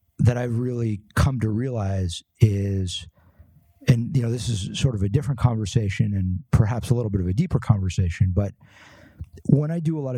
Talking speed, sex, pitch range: 190 wpm, male, 95-120 Hz